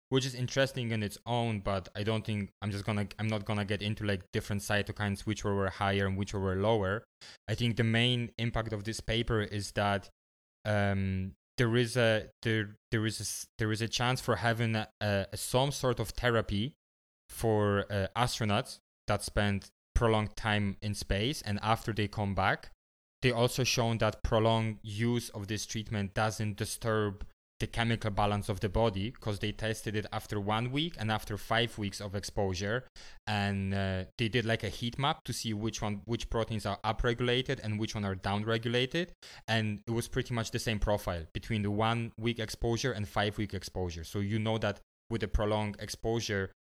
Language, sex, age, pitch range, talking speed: English, male, 20-39, 100-115 Hz, 195 wpm